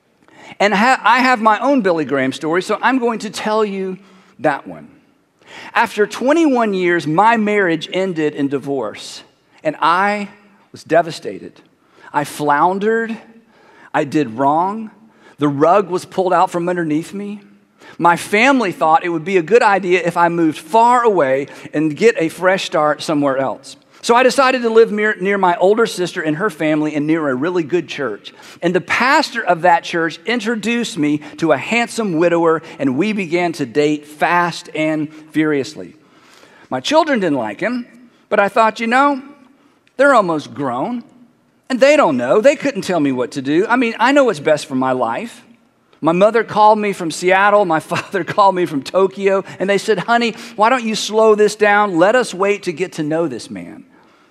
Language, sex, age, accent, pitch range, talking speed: English, male, 50-69, American, 160-230 Hz, 180 wpm